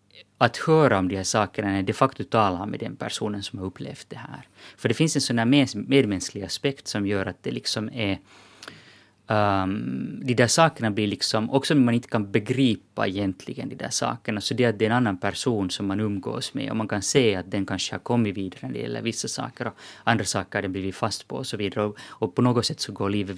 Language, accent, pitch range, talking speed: Finnish, native, 100-125 Hz, 230 wpm